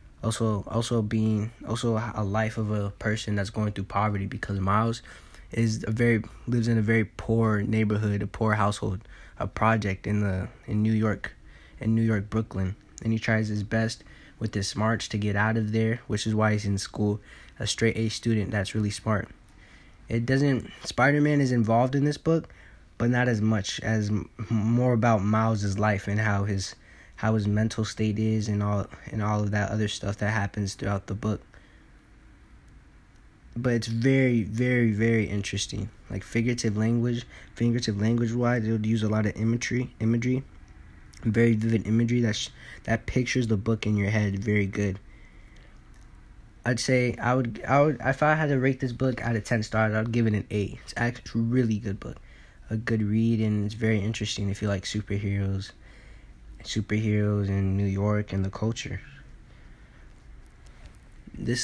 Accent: American